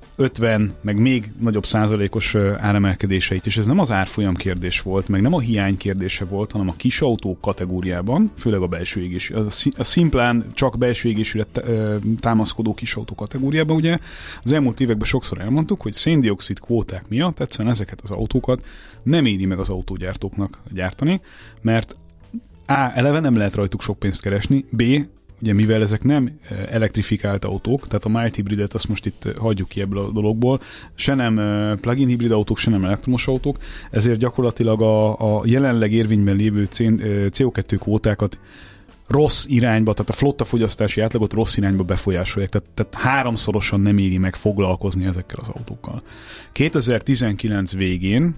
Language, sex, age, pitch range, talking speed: Hungarian, male, 30-49, 100-120 Hz, 155 wpm